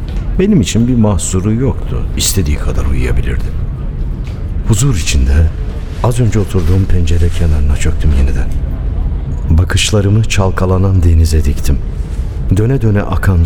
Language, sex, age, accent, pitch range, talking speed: Turkish, male, 60-79, native, 75-100 Hz, 105 wpm